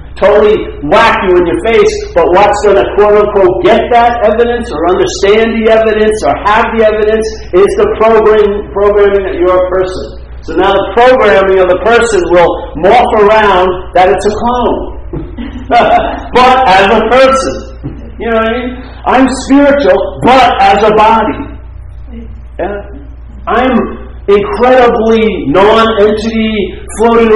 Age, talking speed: 50-69, 135 wpm